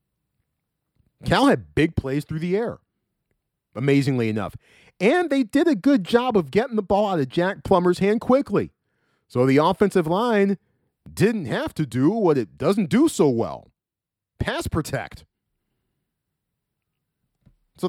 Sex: male